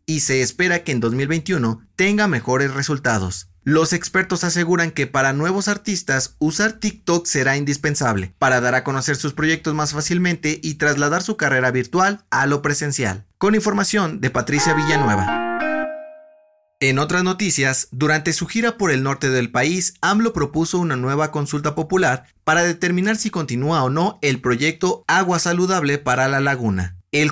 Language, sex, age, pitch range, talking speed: Spanish, male, 30-49, 130-180 Hz, 160 wpm